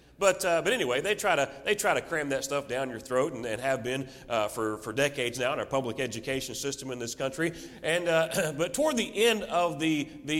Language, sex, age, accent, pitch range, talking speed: English, male, 40-59, American, 150-230 Hz, 240 wpm